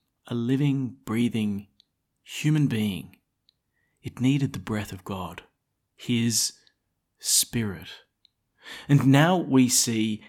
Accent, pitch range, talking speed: Australian, 110-140 Hz, 100 wpm